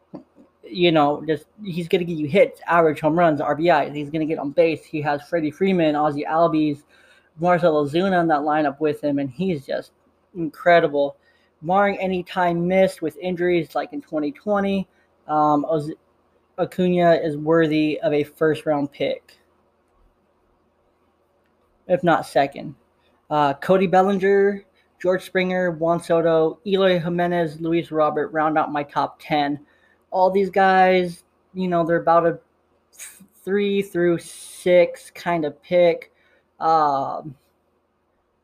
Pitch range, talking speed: 155-185 Hz, 140 wpm